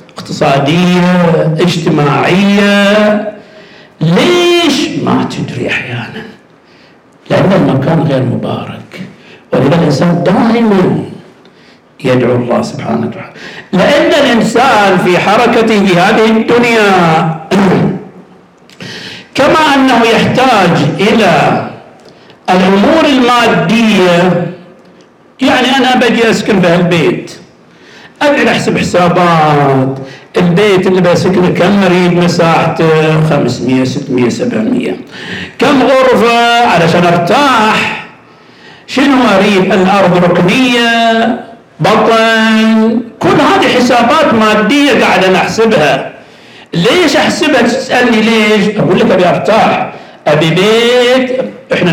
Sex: male